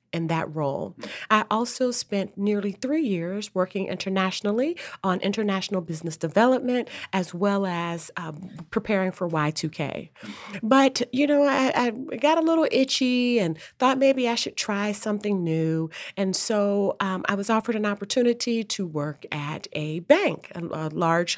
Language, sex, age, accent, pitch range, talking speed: English, female, 40-59, American, 170-235 Hz, 150 wpm